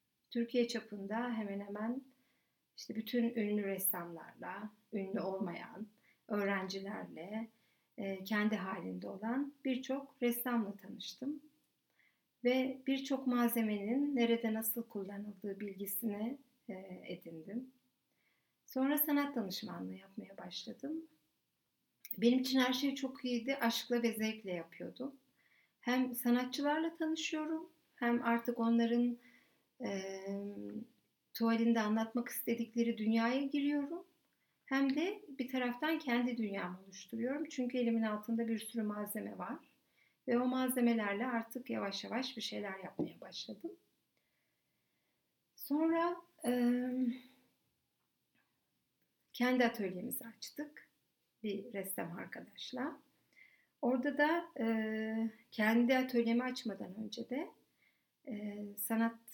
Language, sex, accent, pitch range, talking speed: Turkish, female, native, 210-260 Hz, 95 wpm